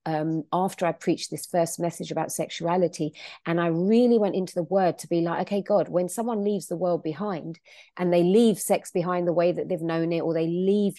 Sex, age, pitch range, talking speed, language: female, 40-59, 160-190 Hz, 225 wpm, English